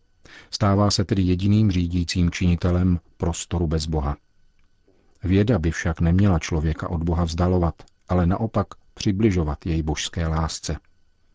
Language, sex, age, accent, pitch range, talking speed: Czech, male, 50-69, native, 80-95 Hz, 120 wpm